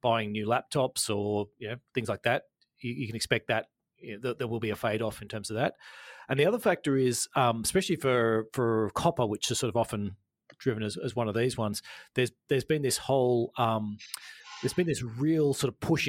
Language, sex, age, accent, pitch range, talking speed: English, male, 30-49, Australian, 110-135 Hz, 230 wpm